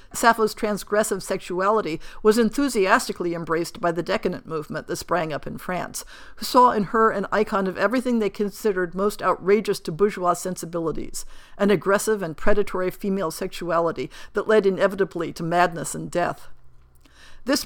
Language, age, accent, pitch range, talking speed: English, 50-69, American, 175-215 Hz, 150 wpm